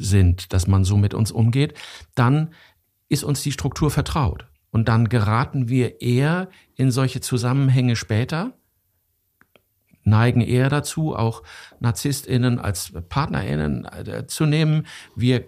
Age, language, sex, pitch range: 50-69, German, male, 105-135 Hz